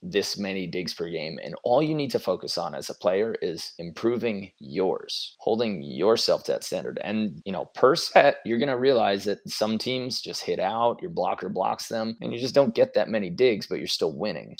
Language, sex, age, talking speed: English, male, 30-49, 220 wpm